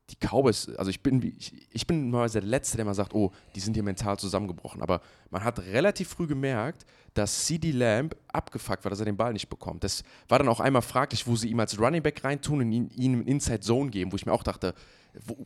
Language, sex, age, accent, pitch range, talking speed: German, male, 30-49, German, 100-125 Hz, 235 wpm